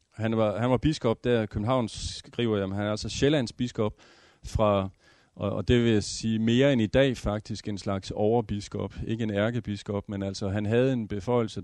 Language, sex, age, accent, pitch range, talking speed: Danish, male, 40-59, native, 100-120 Hz, 205 wpm